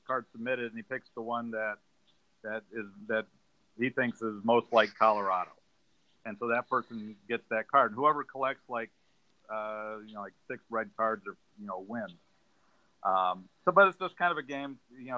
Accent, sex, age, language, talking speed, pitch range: American, male, 50-69, English, 190 wpm, 110-130 Hz